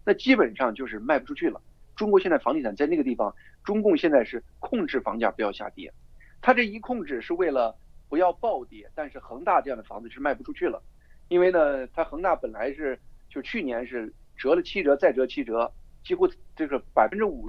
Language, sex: Chinese, male